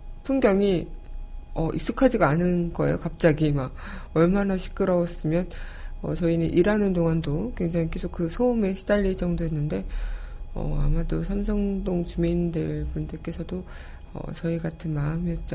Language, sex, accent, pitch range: Korean, female, native, 145-185 Hz